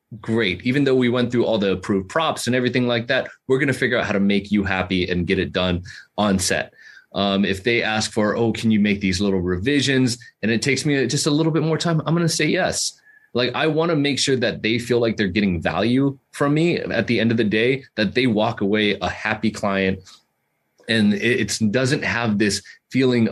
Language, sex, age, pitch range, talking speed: English, male, 30-49, 100-130 Hz, 235 wpm